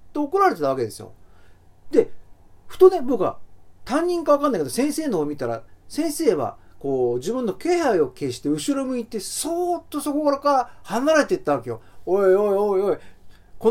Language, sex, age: Japanese, male, 40-59